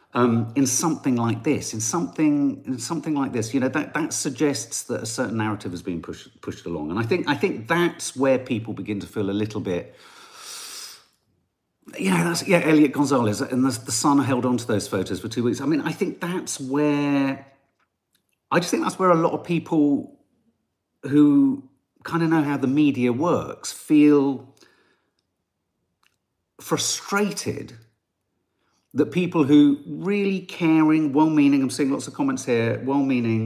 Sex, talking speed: male, 175 wpm